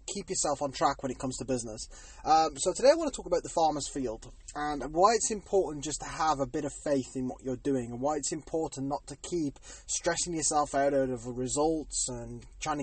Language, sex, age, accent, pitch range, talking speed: English, male, 20-39, British, 130-160 Hz, 230 wpm